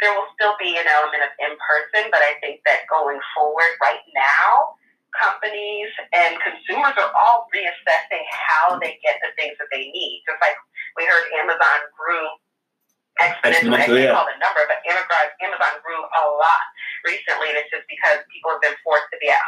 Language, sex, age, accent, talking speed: English, female, 30-49, American, 180 wpm